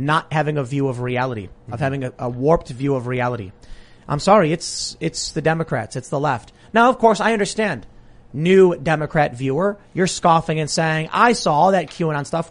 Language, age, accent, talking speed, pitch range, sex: English, 30-49, American, 195 wpm, 135-200 Hz, male